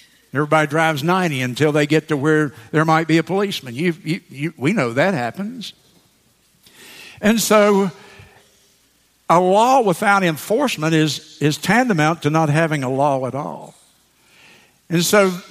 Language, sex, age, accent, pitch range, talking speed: English, male, 60-79, American, 150-185 Hz, 145 wpm